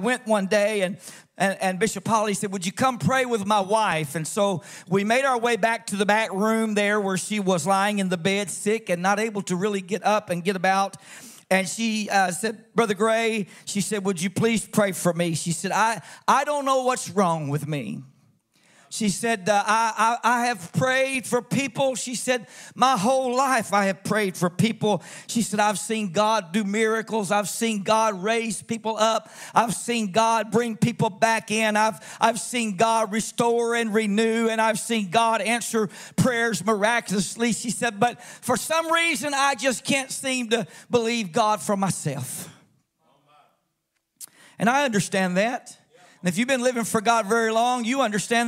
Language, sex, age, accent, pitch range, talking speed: English, male, 50-69, American, 205-255 Hz, 190 wpm